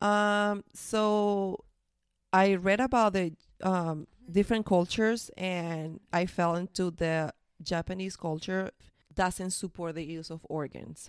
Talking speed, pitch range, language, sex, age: 120 wpm, 160-190 Hz, English, female, 30-49